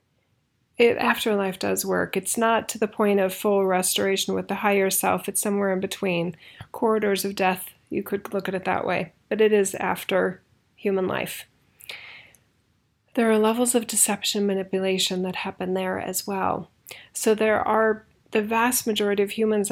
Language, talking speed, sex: English, 165 wpm, female